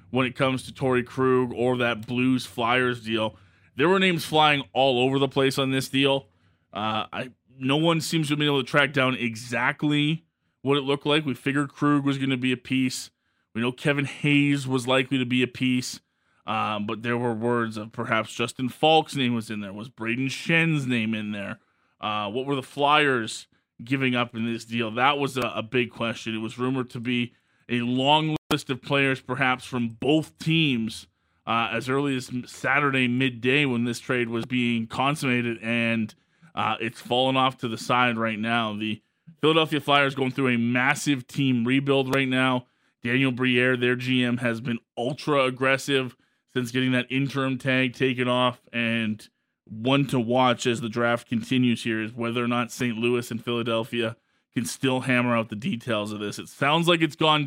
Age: 20-39